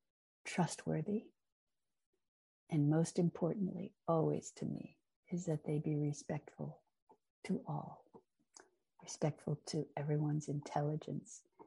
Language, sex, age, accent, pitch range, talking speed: English, female, 60-79, American, 150-180 Hz, 95 wpm